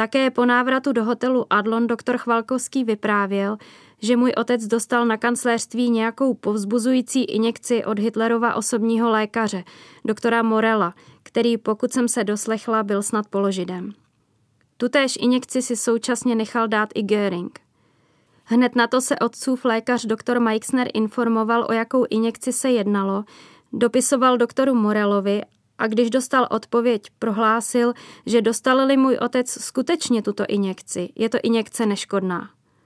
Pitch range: 220-250 Hz